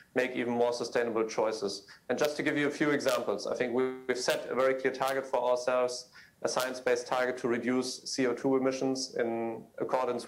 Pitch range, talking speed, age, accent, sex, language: 120-140 Hz, 185 wpm, 40-59, German, male, Swedish